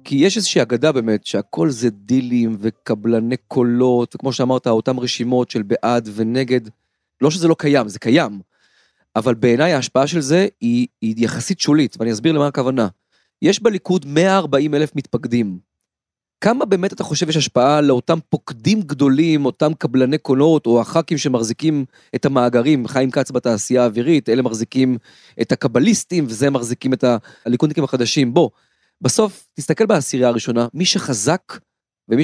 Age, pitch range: 30-49, 125-160 Hz